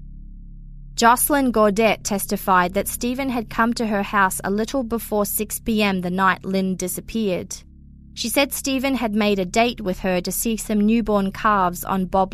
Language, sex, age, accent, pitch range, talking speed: English, female, 20-39, Australian, 190-235 Hz, 165 wpm